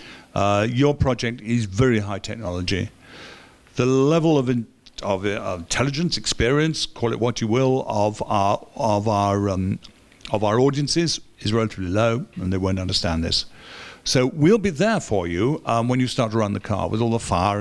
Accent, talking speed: British, 180 wpm